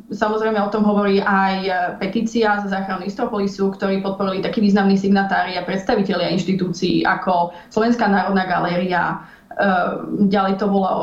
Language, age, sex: Slovak, 20-39, female